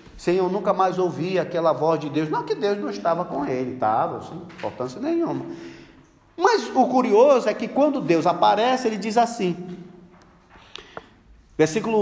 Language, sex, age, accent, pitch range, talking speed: Portuguese, male, 40-59, Brazilian, 150-230 Hz, 160 wpm